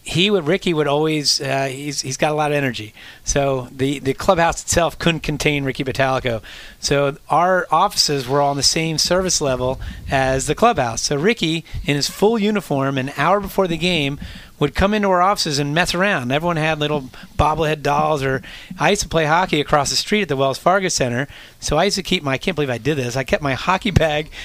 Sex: male